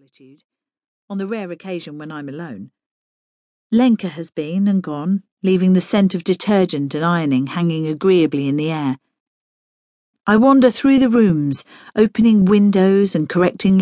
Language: English